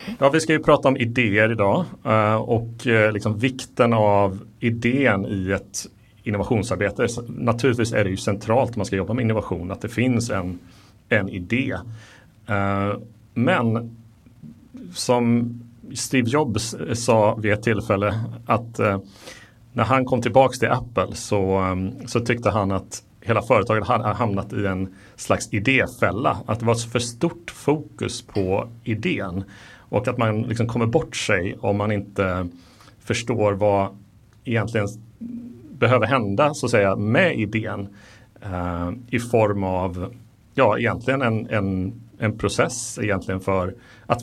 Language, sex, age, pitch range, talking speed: Swedish, male, 30-49, 100-120 Hz, 140 wpm